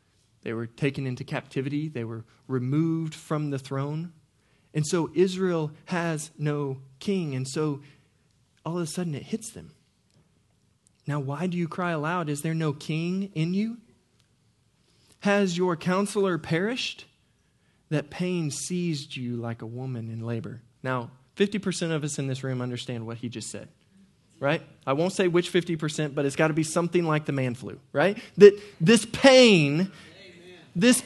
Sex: male